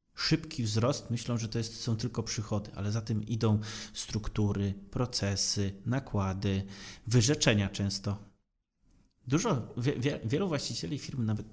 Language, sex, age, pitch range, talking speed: Polish, male, 30-49, 105-130 Hz, 125 wpm